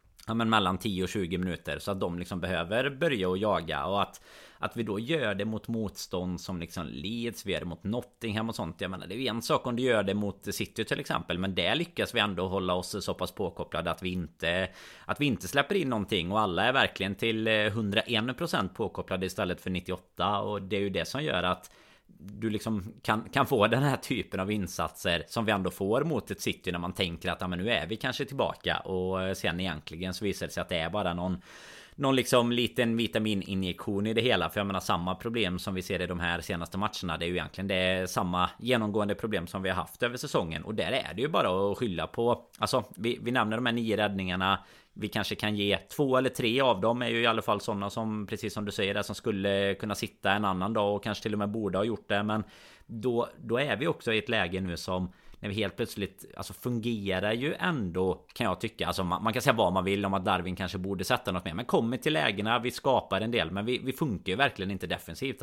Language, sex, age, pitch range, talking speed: Swedish, male, 30-49, 95-115 Hz, 245 wpm